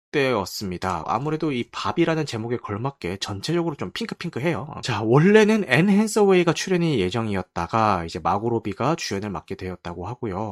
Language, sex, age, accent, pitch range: Korean, male, 30-49, native, 105-165 Hz